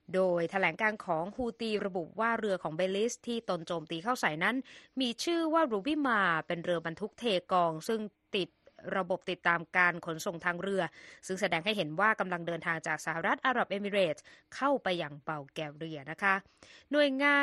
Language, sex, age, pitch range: Thai, female, 20-39, 175-225 Hz